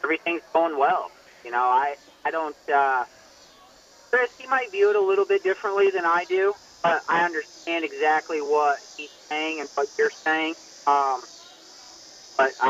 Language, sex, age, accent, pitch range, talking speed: English, male, 40-59, American, 140-205 Hz, 160 wpm